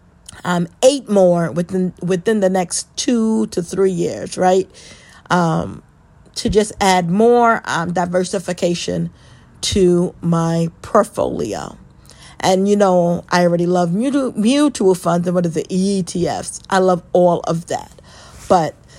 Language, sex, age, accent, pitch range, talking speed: English, female, 40-59, American, 175-205 Hz, 135 wpm